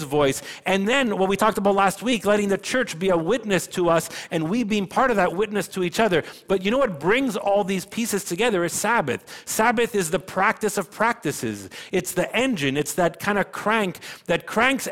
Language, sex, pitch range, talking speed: English, male, 155-210 Hz, 215 wpm